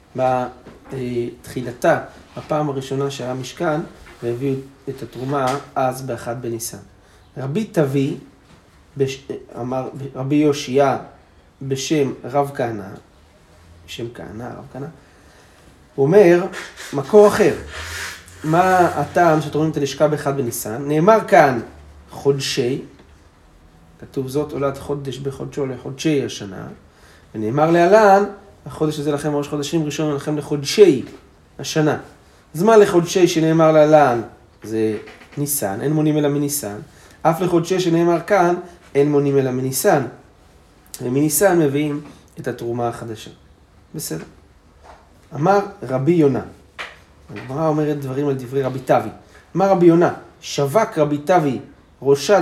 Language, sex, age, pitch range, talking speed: Hebrew, male, 40-59, 115-150 Hz, 110 wpm